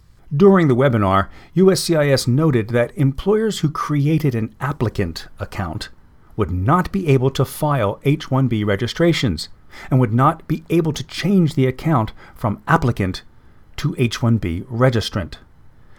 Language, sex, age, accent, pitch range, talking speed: English, male, 40-59, American, 115-160 Hz, 130 wpm